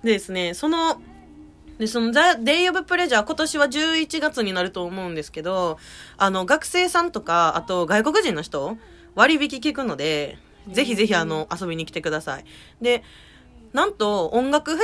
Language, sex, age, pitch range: Japanese, female, 20-39, 170-285 Hz